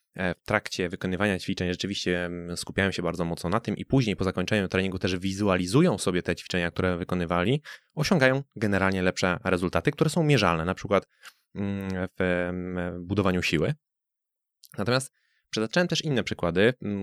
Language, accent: Polish, native